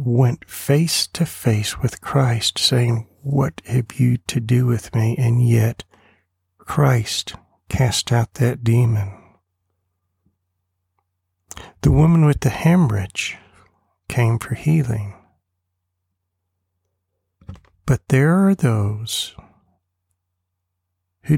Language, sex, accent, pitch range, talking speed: English, male, American, 90-125 Hz, 95 wpm